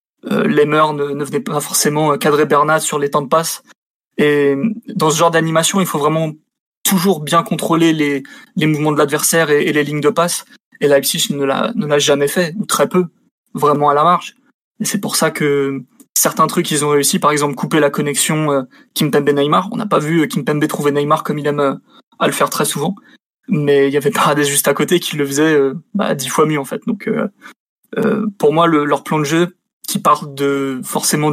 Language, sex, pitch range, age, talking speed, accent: French, male, 145-175 Hz, 20-39, 215 wpm, French